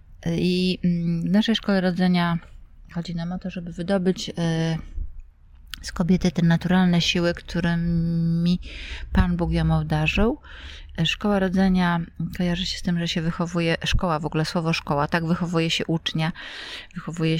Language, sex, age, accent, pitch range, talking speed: Polish, female, 20-39, native, 155-180 Hz, 140 wpm